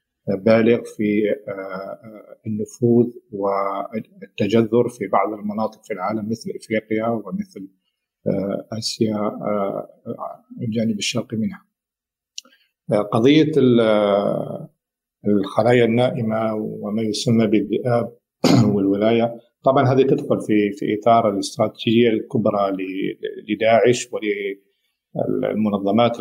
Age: 50-69